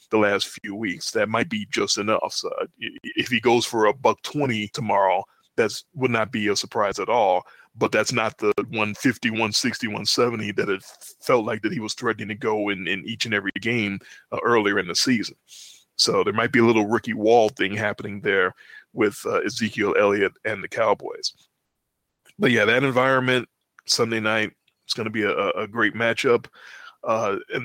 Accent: American